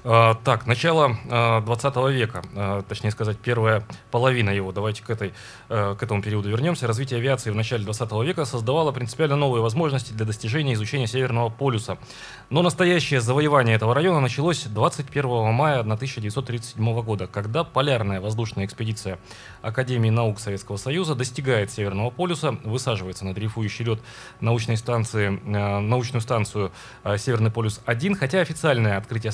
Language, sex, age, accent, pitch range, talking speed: Russian, male, 20-39, native, 110-135 Hz, 140 wpm